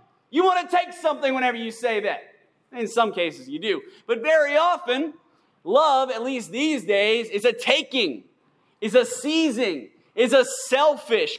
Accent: American